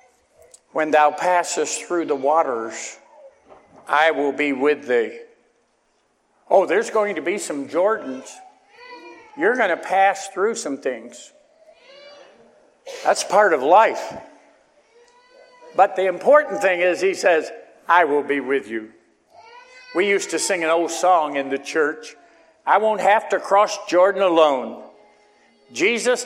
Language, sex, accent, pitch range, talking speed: English, male, American, 175-295 Hz, 135 wpm